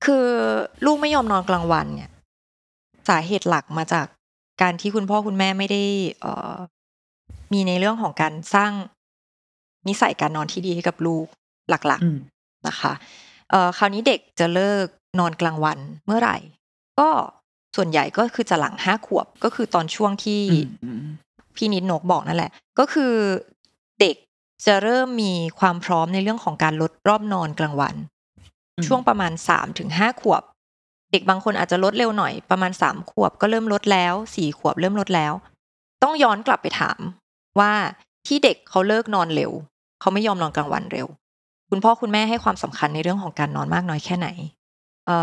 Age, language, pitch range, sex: 20-39, Thai, 160-210 Hz, female